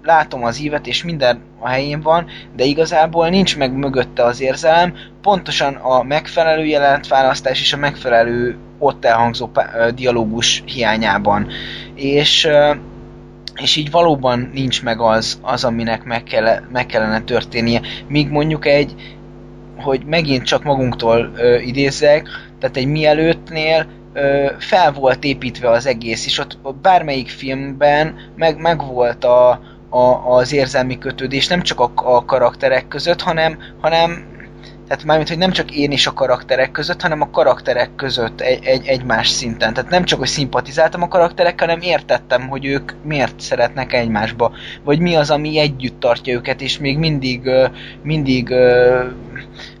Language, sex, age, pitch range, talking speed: Hungarian, male, 20-39, 120-150 Hz, 140 wpm